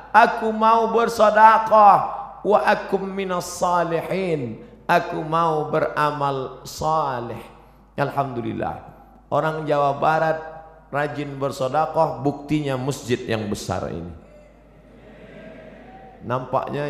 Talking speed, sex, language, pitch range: 80 wpm, male, Indonesian, 110-155 Hz